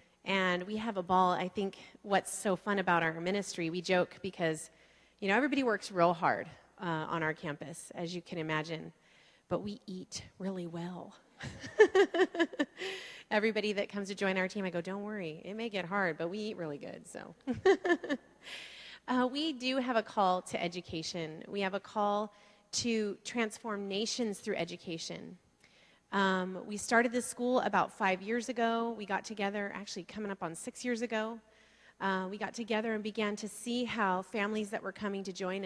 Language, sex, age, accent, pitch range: Korean, female, 30-49, American, 185-220 Hz